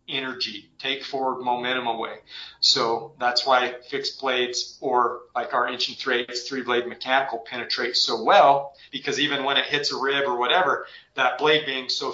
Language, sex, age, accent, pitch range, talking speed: English, male, 30-49, American, 125-145 Hz, 175 wpm